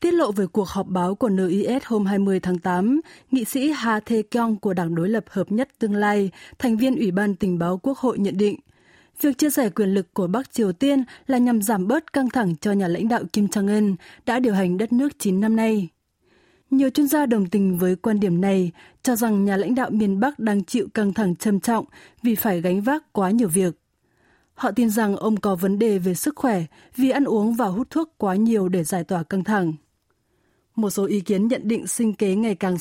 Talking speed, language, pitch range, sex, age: 230 wpm, Vietnamese, 195-245 Hz, female, 20-39